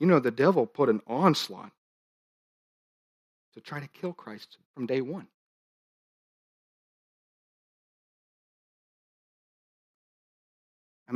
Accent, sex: American, male